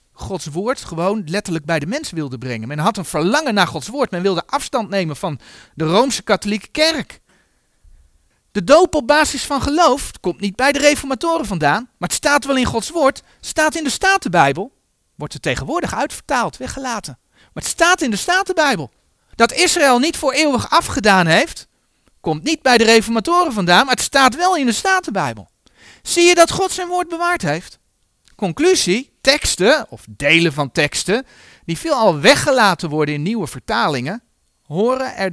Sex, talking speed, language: male, 175 wpm, Dutch